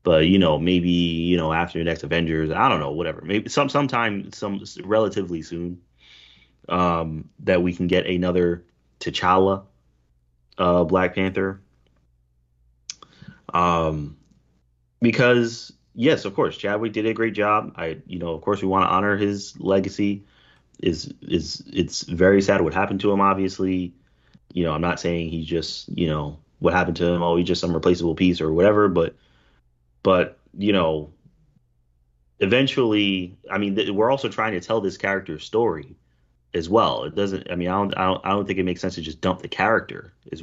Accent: American